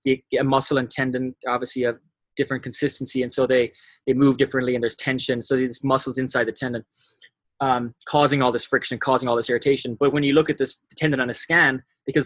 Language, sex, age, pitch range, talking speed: English, male, 20-39, 120-140 Hz, 220 wpm